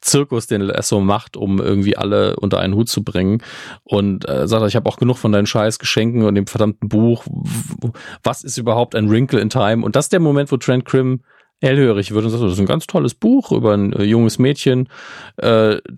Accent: German